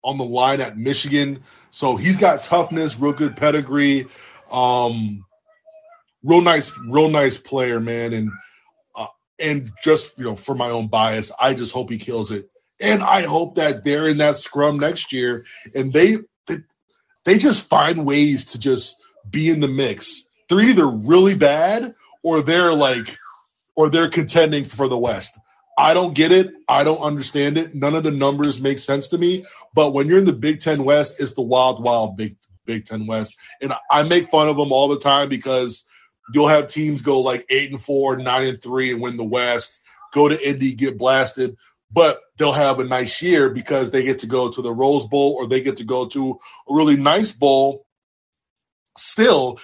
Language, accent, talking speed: English, American, 190 wpm